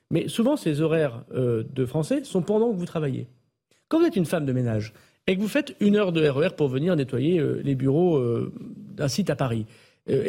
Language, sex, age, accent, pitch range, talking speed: French, male, 40-59, French, 125-180 Hz, 225 wpm